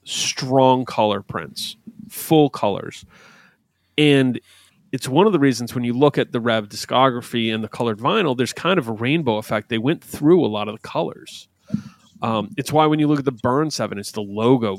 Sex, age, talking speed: male, 30-49, 200 wpm